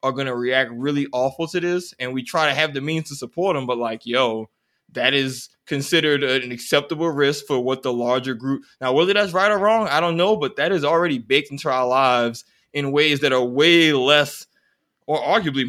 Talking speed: 220 wpm